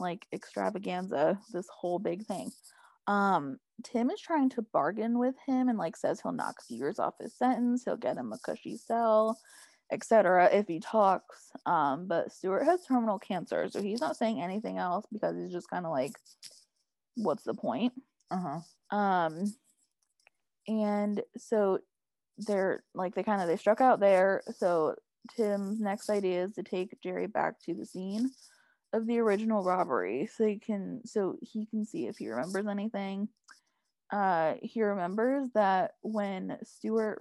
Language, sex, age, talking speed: English, female, 20-39, 160 wpm